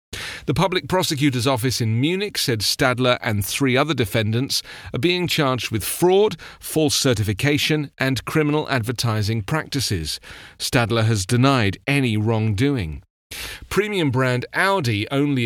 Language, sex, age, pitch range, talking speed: English, male, 40-59, 110-140 Hz, 125 wpm